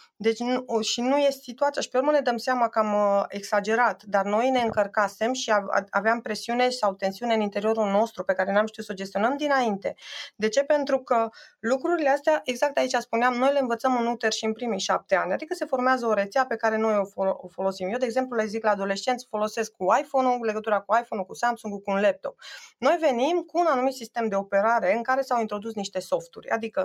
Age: 20-39